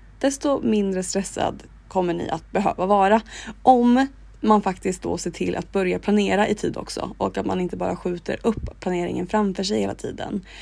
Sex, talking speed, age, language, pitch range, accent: female, 180 wpm, 20-39, Swedish, 185-225 Hz, native